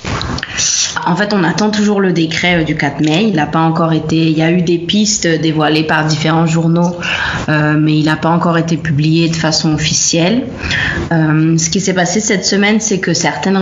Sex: female